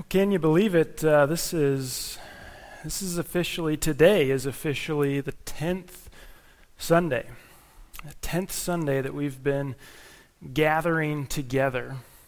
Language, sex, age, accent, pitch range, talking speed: English, male, 30-49, American, 135-155 Hz, 115 wpm